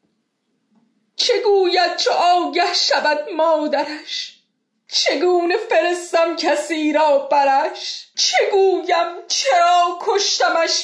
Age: 30-49